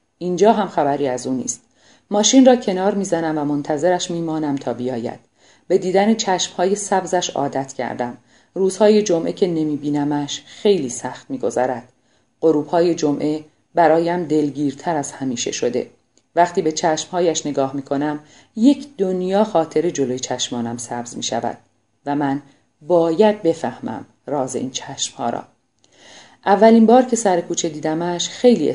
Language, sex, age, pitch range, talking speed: Persian, female, 40-59, 135-180 Hz, 125 wpm